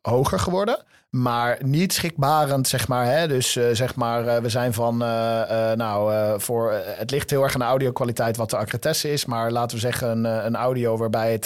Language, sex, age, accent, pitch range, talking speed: Dutch, male, 50-69, Dutch, 120-140 Hz, 220 wpm